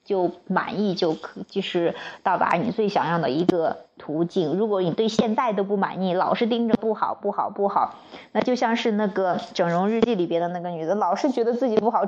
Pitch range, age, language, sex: 180-230 Hz, 20-39, Chinese, female